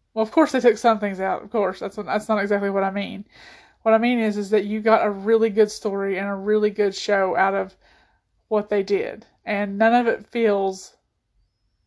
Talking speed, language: 220 wpm, English